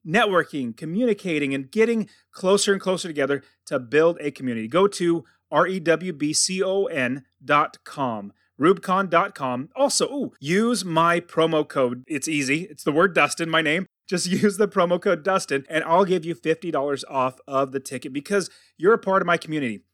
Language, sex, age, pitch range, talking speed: English, male, 30-49, 145-195 Hz, 155 wpm